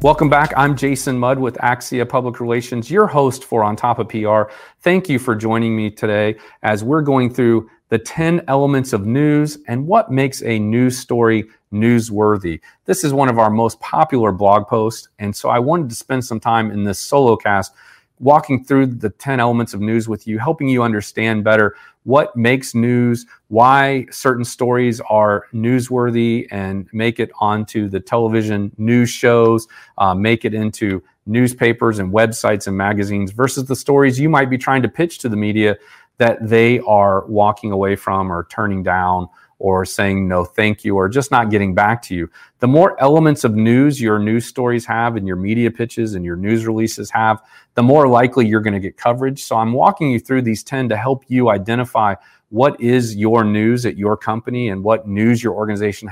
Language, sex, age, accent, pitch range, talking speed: English, male, 40-59, American, 105-125 Hz, 190 wpm